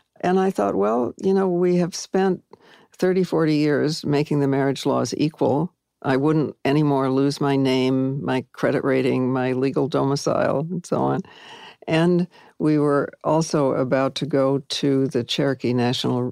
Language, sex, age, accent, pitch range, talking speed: English, female, 60-79, American, 130-165 Hz, 160 wpm